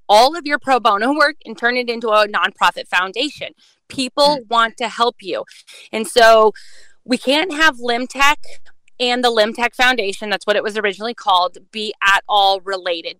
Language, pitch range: English, 200-235 Hz